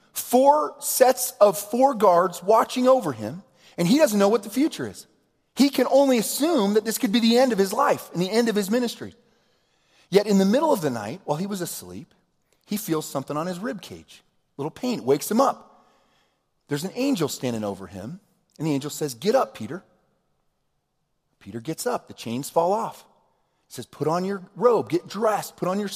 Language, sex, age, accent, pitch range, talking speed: English, male, 40-59, American, 180-245 Hz, 210 wpm